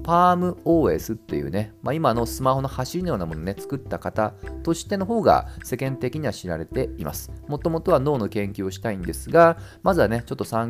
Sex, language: male, Japanese